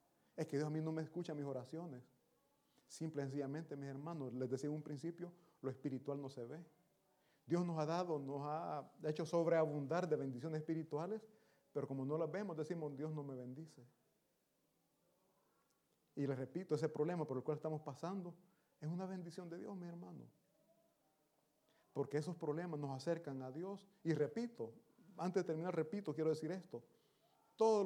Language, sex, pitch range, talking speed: Italian, male, 140-180 Hz, 170 wpm